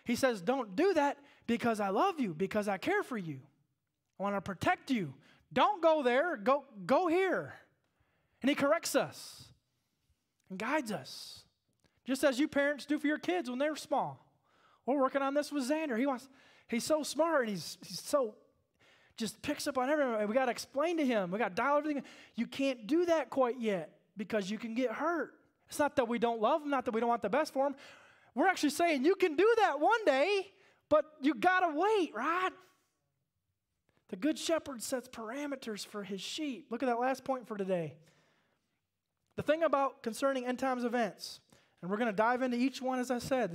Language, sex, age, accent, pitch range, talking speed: English, male, 20-39, American, 210-290 Hz, 205 wpm